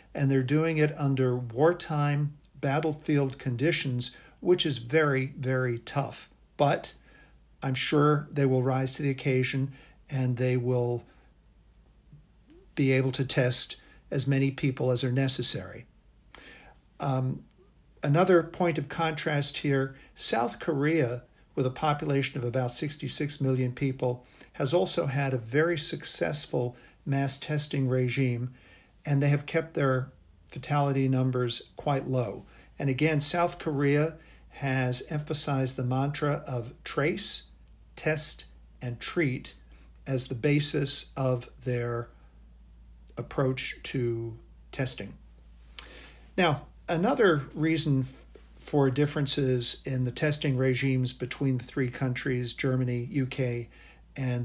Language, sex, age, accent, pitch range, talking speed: English, male, 50-69, American, 125-145 Hz, 115 wpm